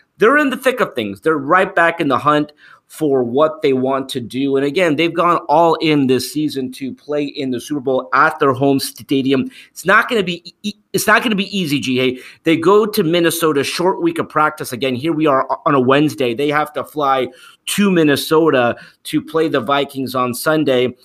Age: 30-49